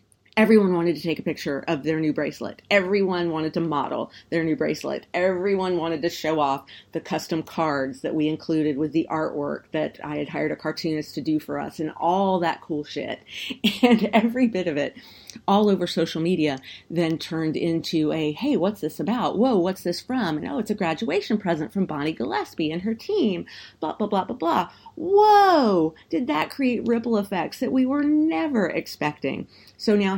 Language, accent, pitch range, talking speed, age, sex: English, American, 150-190 Hz, 195 wpm, 40-59, female